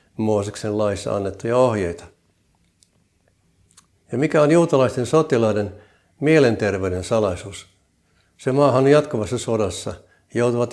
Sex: male